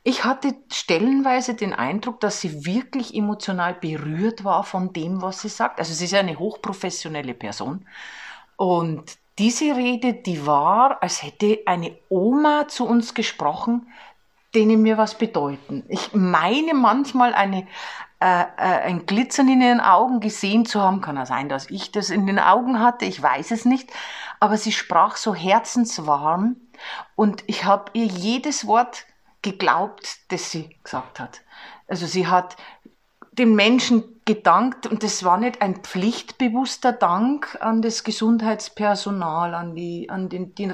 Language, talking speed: German, 150 wpm